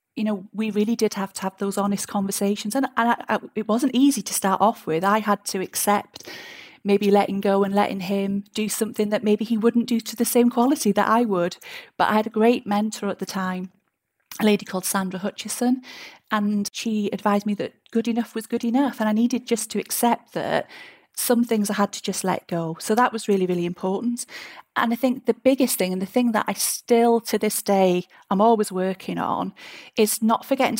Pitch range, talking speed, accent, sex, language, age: 195-235 Hz, 215 wpm, British, female, English, 30-49